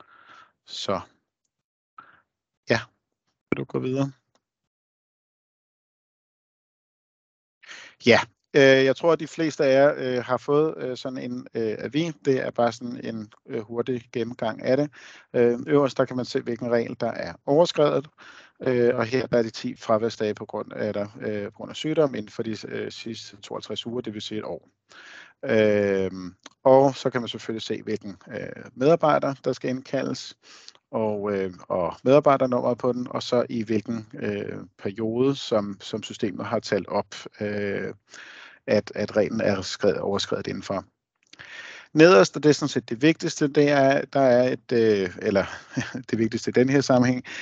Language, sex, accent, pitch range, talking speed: Danish, male, native, 110-135 Hz, 145 wpm